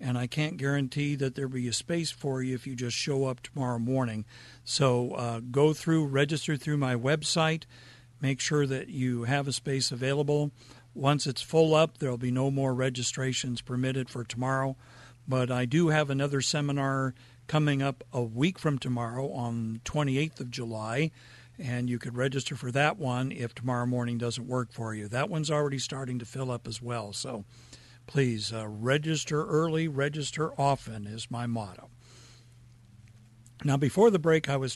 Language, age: English, 50-69